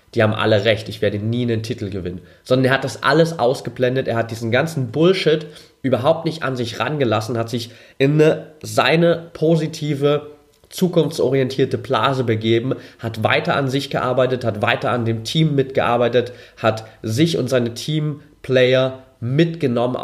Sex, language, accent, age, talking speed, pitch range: male, German, German, 30-49, 155 wpm, 110-135 Hz